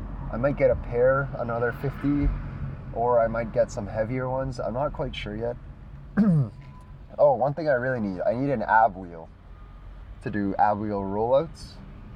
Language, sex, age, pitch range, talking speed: English, male, 20-39, 100-130 Hz, 175 wpm